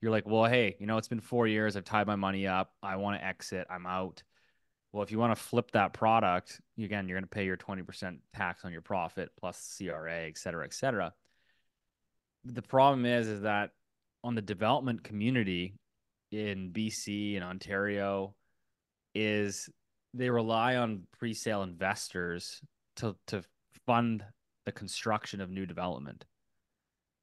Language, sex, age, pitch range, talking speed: English, male, 20-39, 100-115 Hz, 165 wpm